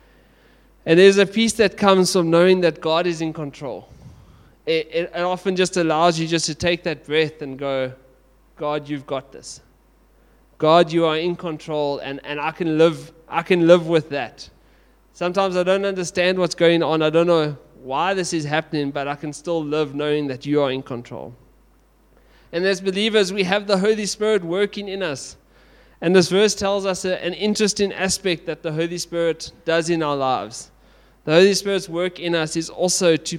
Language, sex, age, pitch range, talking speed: English, male, 20-39, 160-185 Hz, 190 wpm